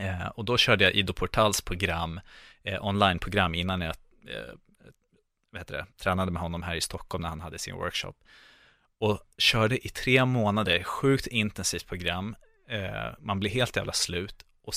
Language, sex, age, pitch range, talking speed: Swedish, male, 30-49, 95-120 Hz, 165 wpm